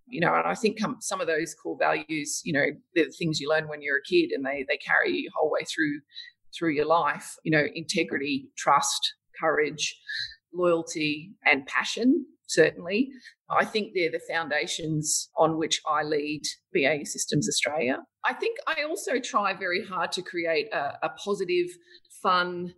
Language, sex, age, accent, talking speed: English, female, 40-59, Australian, 175 wpm